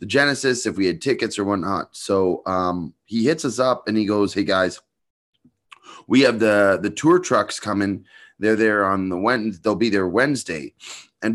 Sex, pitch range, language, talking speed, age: male, 95-120 Hz, English, 190 wpm, 30-49